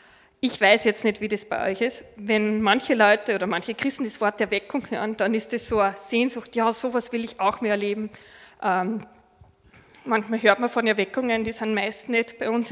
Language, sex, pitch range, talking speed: German, female, 210-245 Hz, 205 wpm